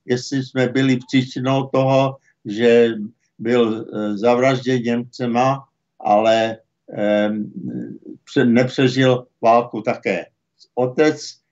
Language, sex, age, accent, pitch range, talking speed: Czech, male, 60-79, native, 120-140 Hz, 80 wpm